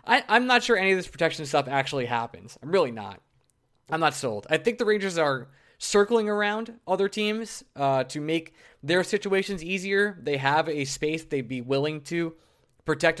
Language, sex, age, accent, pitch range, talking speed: English, male, 20-39, American, 130-170 Hz, 185 wpm